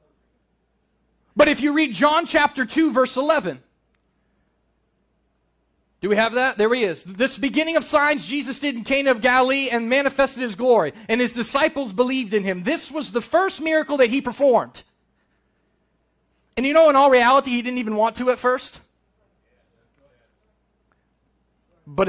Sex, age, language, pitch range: male, 30-49, English, 230-300 Hz